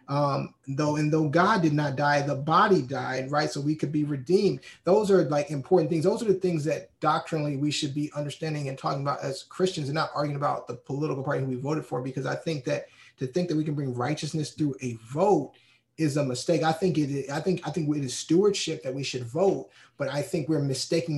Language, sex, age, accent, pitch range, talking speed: English, male, 30-49, American, 140-175 Hz, 240 wpm